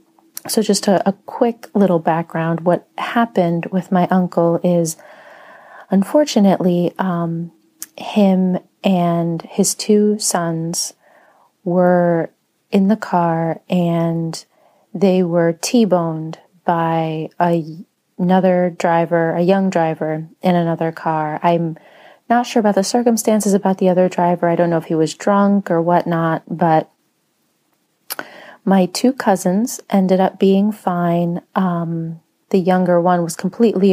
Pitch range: 165-195 Hz